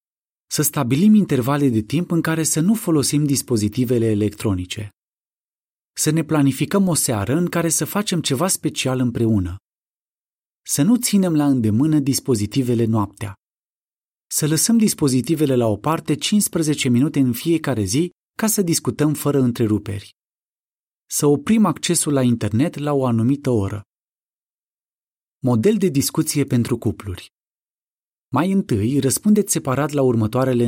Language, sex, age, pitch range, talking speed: Romanian, male, 30-49, 115-160 Hz, 130 wpm